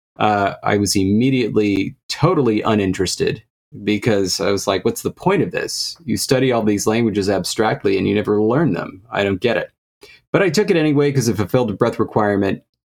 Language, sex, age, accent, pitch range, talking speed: English, male, 30-49, American, 100-120 Hz, 190 wpm